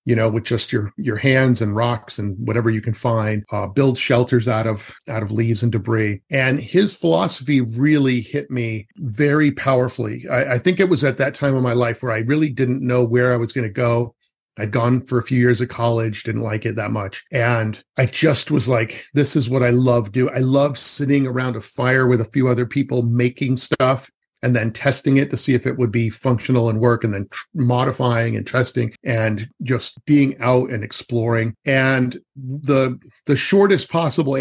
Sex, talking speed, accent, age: male, 215 wpm, American, 40-59